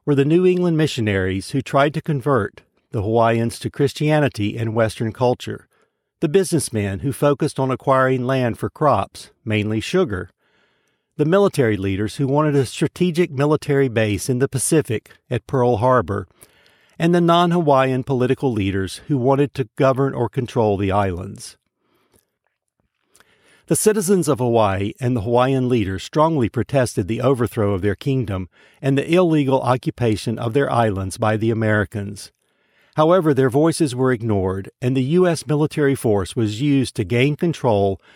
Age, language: 60-79, English